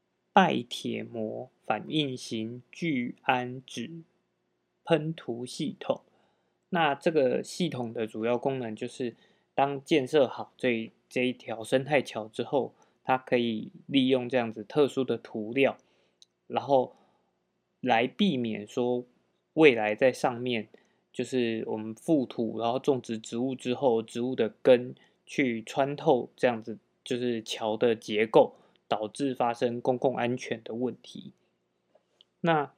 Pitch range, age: 115-135 Hz, 20-39